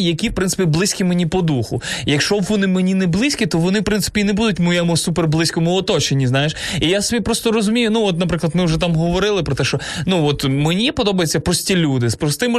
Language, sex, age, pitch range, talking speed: Ukrainian, male, 20-39, 150-190 Hz, 230 wpm